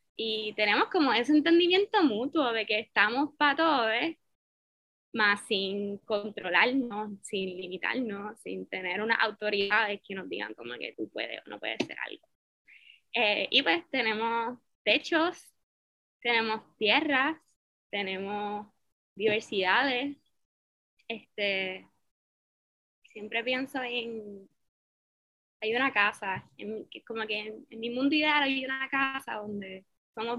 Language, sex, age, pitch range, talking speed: Spanish, female, 10-29, 205-255 Hz, 120 wpm